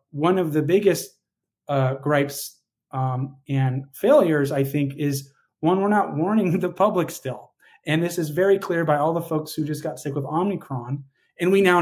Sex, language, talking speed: male, English, 190 wpm